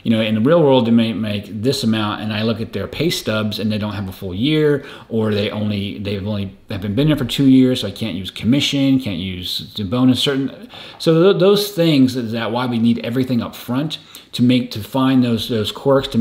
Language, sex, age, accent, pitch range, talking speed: English, male, 30-49, American, 100-130 Hz, 245 wpm